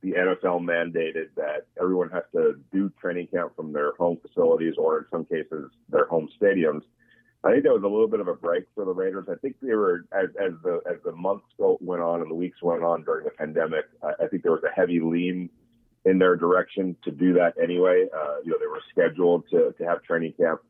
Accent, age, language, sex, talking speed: American, 40-59, English, male, 230 wpm